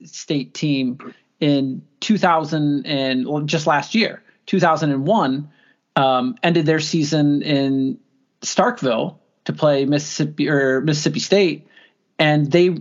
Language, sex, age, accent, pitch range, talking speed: English, male, 30-49, American, 145-185 Hz, 110 wpm